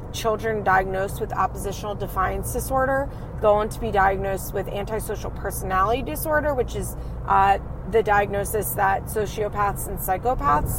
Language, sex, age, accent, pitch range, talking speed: English, female, 30-49, American, 155-230 Hz, 130 wpm